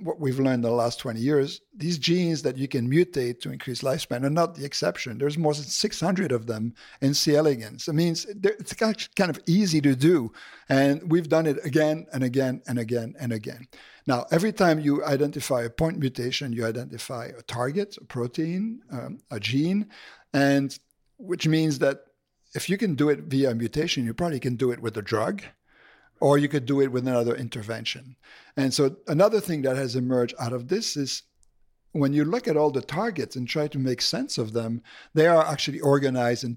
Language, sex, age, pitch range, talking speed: English, male, 50-69, 125-155 Hz, 205 wpm